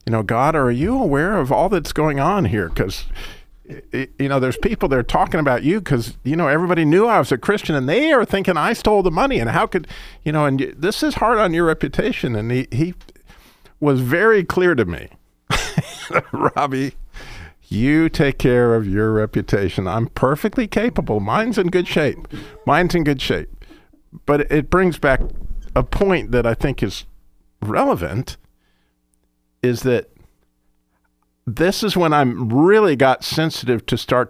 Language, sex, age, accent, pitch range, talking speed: English, male, 50-69, American, 100-150 Hz, 170 wpm